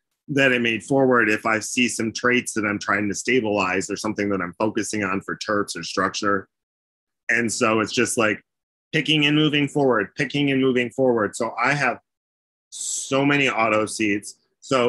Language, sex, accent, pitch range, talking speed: English, male, American, 110-140 Hz, 180 wpm